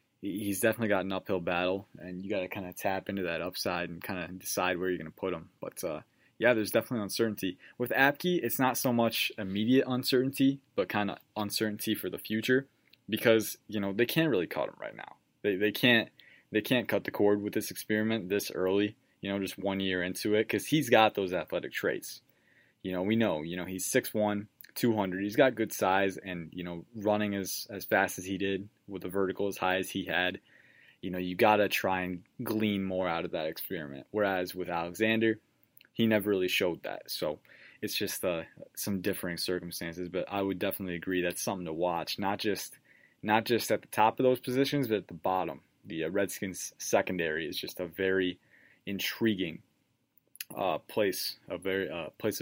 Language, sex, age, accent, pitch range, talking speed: English, male, 20-39, American, 90-110 Hz, 200 wpm